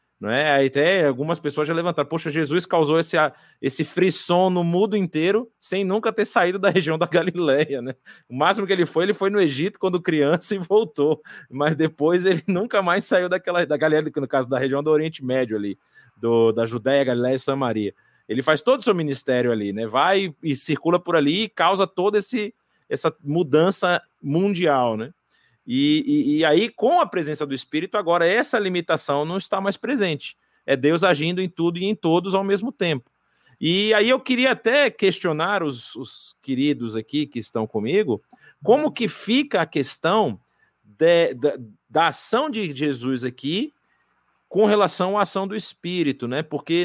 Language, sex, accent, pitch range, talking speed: Portuguese, male, Brazilian, 145-200 Hz, 180 wpm